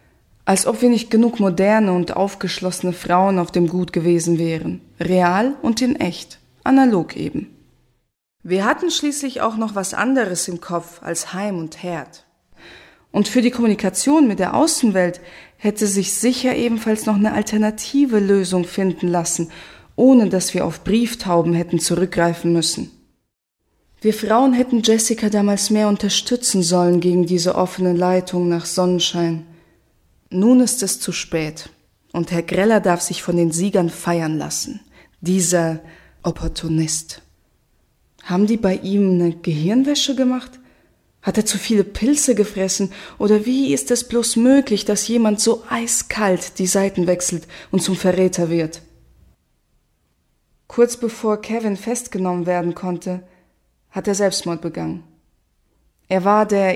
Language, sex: German, female